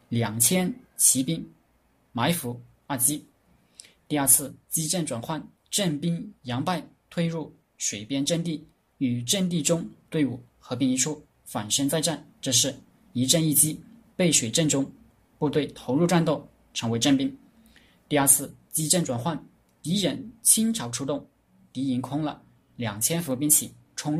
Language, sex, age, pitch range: Chinese, male, 20-39, 125-160 Hz